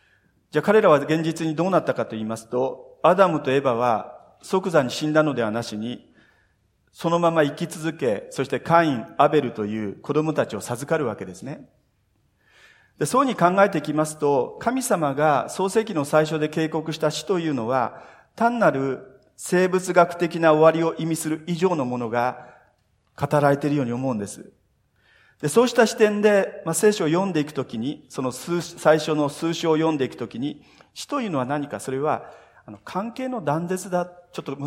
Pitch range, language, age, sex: 130-175 Hz, Japanese, 40-59, male